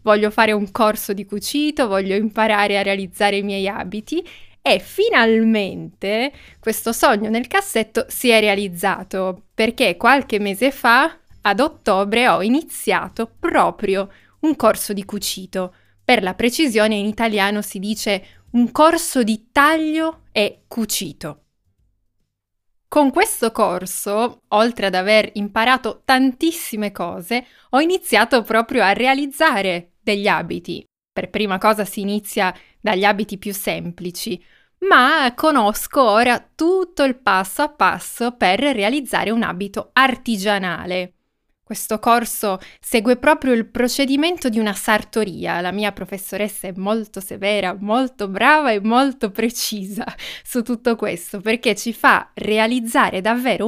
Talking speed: 125 wpm